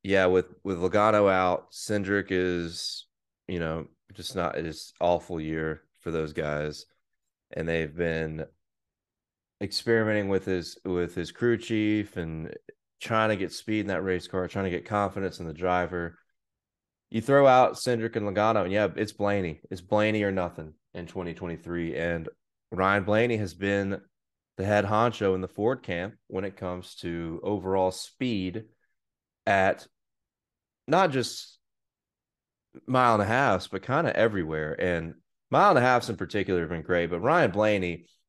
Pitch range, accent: 90-110 Hz, American